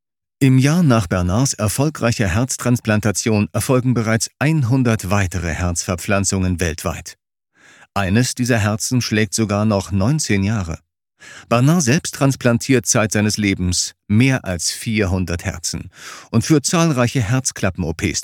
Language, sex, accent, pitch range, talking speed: German, male, German, 95-120 Hz, 110 wpm